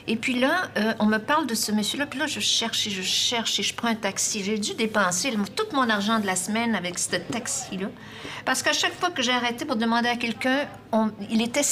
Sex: female